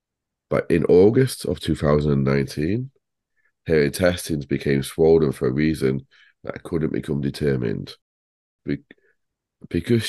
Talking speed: 100 wpm